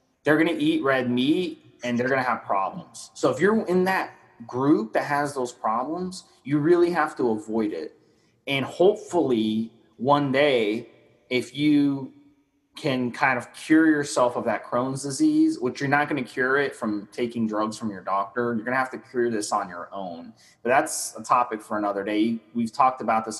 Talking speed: 185 wpm